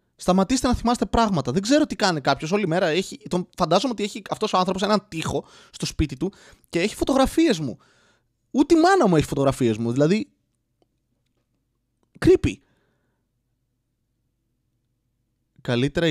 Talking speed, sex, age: 140 wpm, male, 20-39